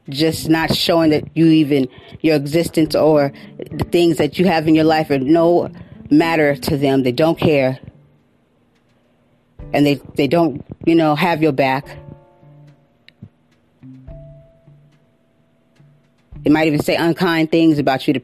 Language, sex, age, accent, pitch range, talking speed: English, female, 30-49, American, 140-165 Hz, 140 wpm